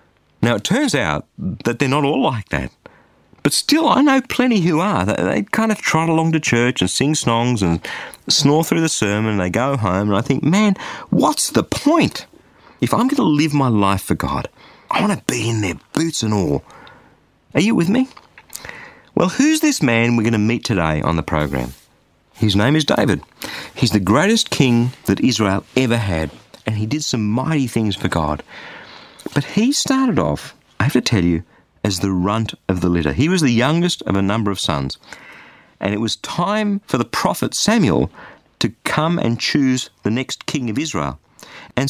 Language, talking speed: English, 200 wpm